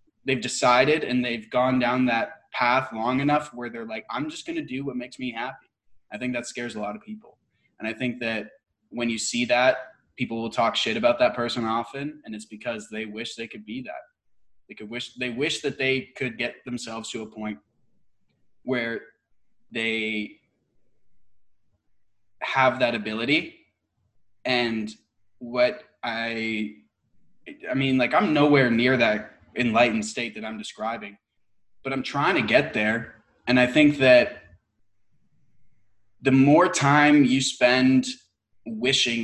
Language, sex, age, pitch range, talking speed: English, male, 20-39, 110-125 Hz, 160 wpm